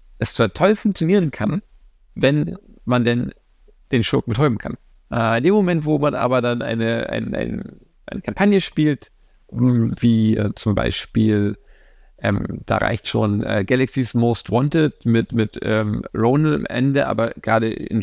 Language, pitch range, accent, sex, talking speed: German, 115-140 Hz, German, male, 155 wpm